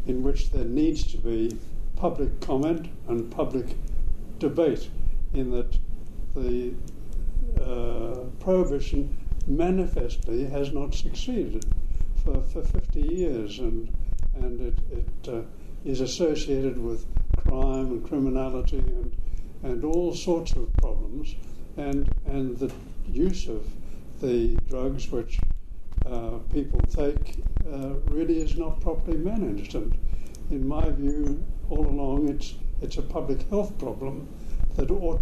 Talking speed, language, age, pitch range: 125 wpm, English, 60-79, 110-145 Hz